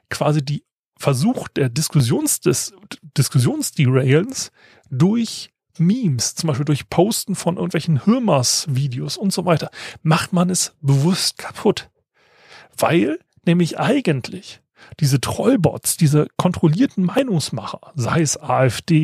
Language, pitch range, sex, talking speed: German, 140-185 Hz, male, 110 wpm